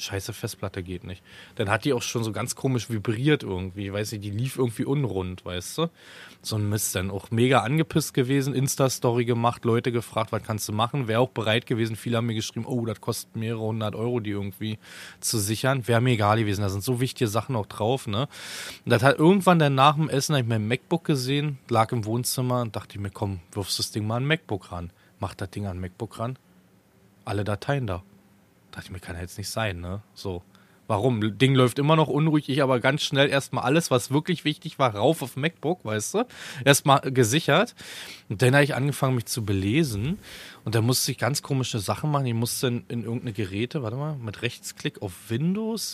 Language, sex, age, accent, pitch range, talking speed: German, male, 20-39, German, 105-140 Hz, 215 wpm